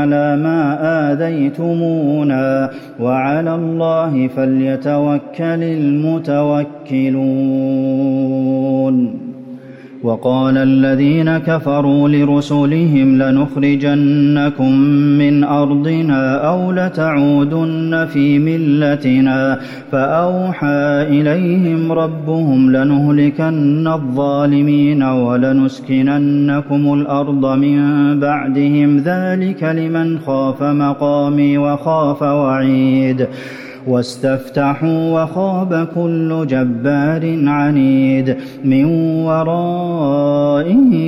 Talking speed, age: 60 wpm, 30-49